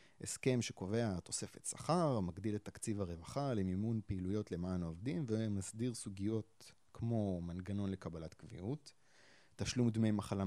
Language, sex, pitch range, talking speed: Hebrew, male, 95-125 Hz, 120 wpm